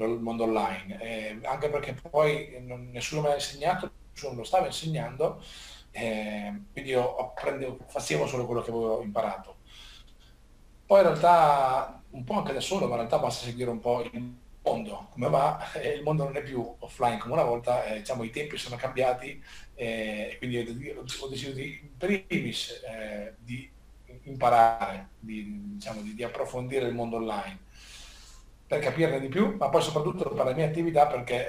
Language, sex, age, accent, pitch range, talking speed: Italian, male, 40-59, native, 115-150 Hz, 175 wpm